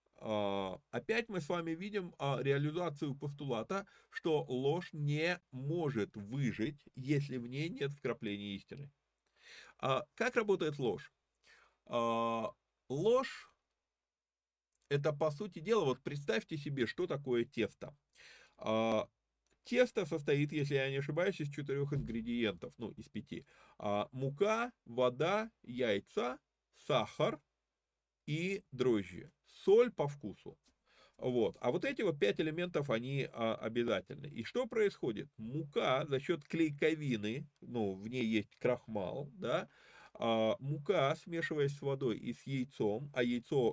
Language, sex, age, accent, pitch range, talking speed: Russian, male, 30-49, native, 115-160 Hz, 120 wpm